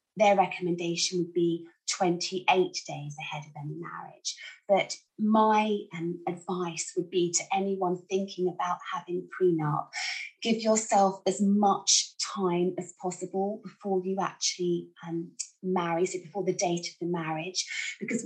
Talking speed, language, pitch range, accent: 140 wpm, English, 175-205 Hz, British